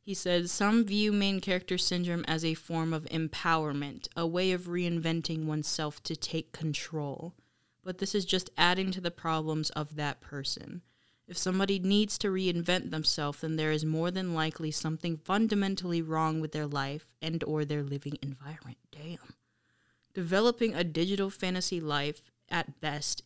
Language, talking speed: English, 160 wpm